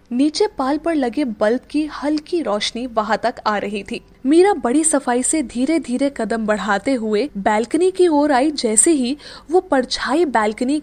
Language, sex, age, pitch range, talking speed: Hindi, female, 10-29, 240-320 Hz, 170 wpm